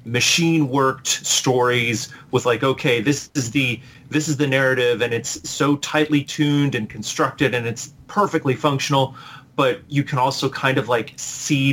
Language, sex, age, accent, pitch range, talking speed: English, male, 30-49, American, 120-145 Hz, 165 wpm